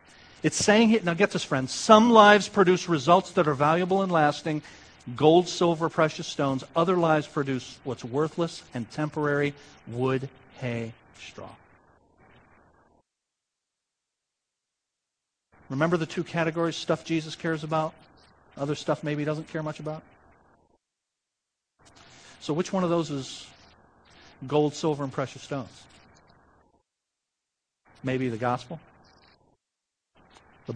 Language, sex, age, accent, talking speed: English, male, 50-69, American, 115 wpm